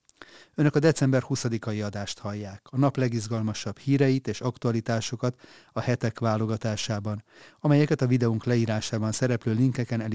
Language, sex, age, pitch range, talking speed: Hungarian, male, 30-49, 105-125 Hz, 130 wpm